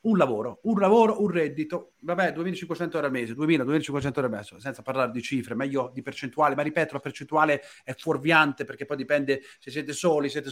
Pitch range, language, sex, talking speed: 140-180 Hz, Italian, male, 200 wpm